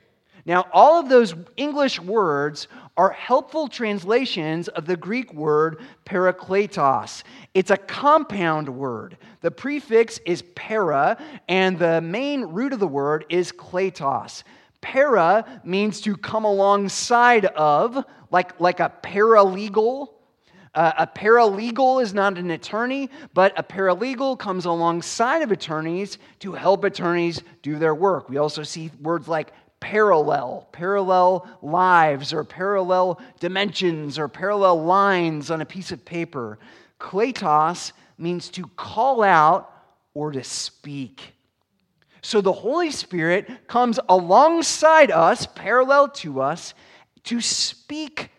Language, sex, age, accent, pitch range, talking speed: English, male, 30-49, American, 165-230 Hz, 125 wpm